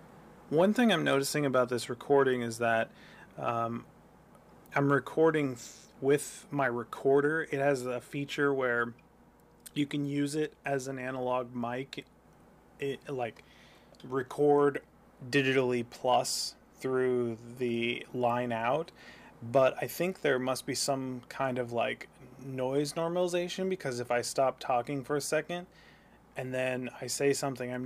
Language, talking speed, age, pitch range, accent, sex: English, 135 wpm, 30-49, 120-145 Hz, American, male